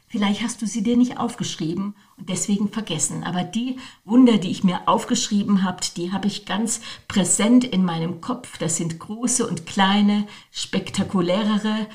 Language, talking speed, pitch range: German, 160 wpm, 175-210 Hz